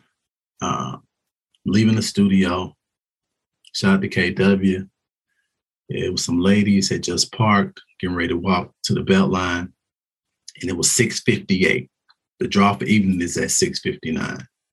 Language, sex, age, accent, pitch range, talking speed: English, male, 40-59, American, 95-130 Hz, 135 wpm